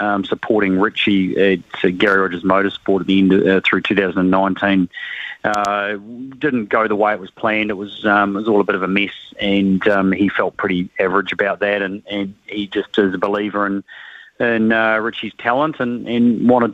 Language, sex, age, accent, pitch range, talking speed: English, male, 30-49, Australian, 100-115 Hz, 200 wpm